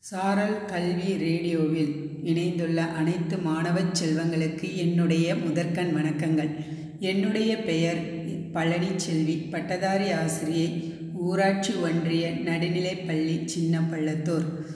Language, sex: Tamil, female